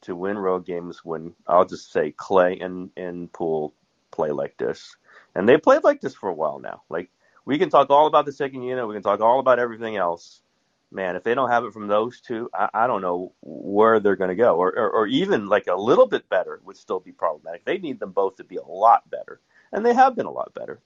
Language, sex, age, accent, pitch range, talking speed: English, male, 40-59, American, 90-150 Hz, 250 wpm